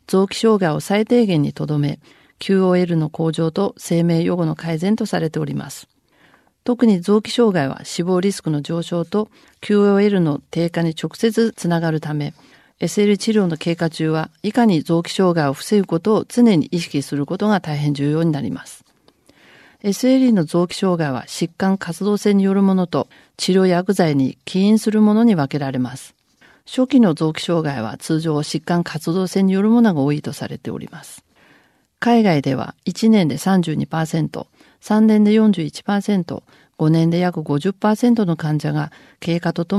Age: 40-59